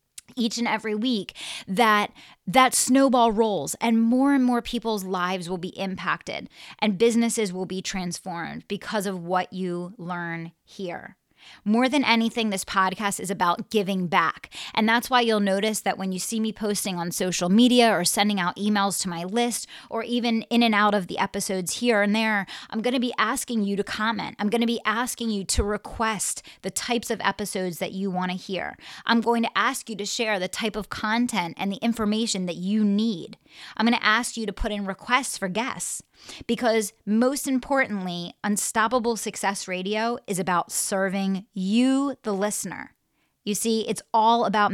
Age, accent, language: 20-39, American, English